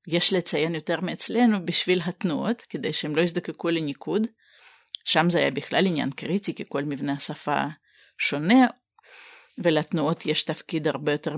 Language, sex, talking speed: Hebrew, female, 140 wpm